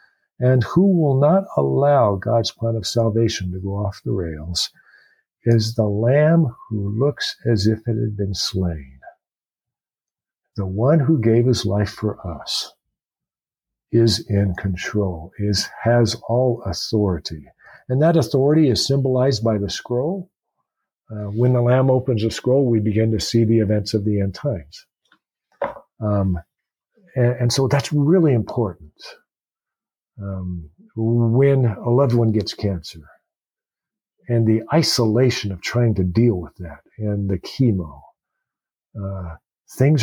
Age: 50-69